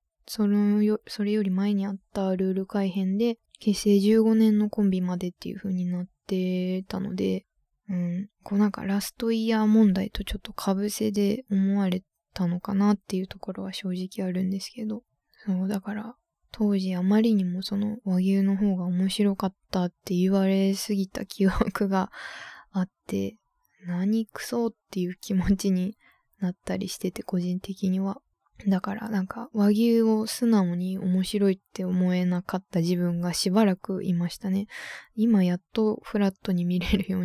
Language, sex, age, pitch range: Japanese, female, 20-39, 185-210 Hz